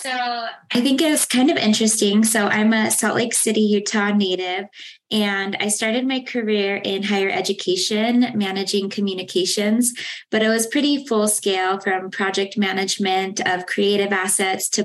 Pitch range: 190-220 Hz